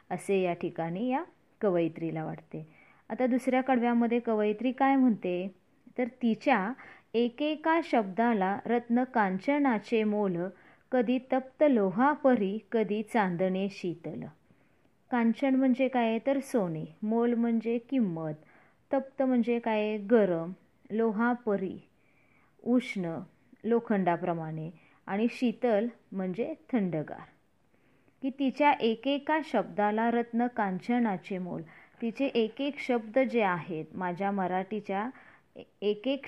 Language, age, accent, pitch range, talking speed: Marathi, 30-49, native, 190-245 Hz, 95 wpm